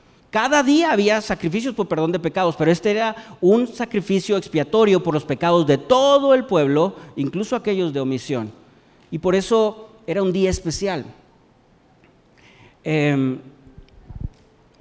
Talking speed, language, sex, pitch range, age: 135 wpm, Spanish, male, 150-190 Hz, 40-59